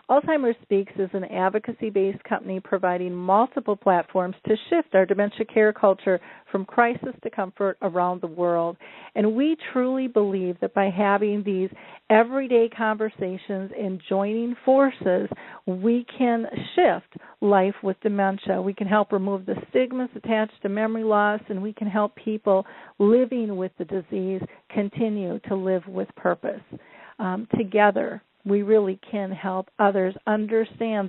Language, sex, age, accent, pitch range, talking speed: English, female, 50-69, American, 190-225 Hz, 140 wpm